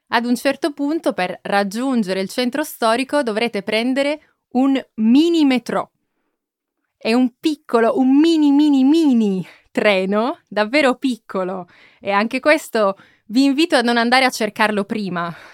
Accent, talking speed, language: native, 125 wpm, Italian